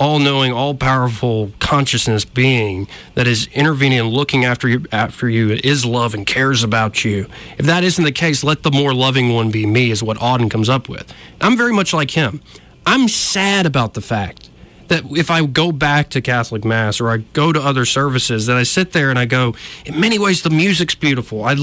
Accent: American